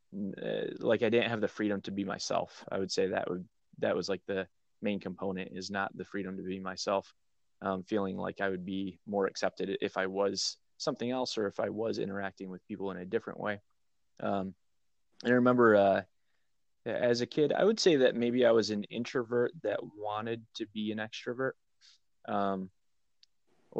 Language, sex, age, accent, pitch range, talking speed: English, male, 20-39, American, 95-110 Hz, 185 wpm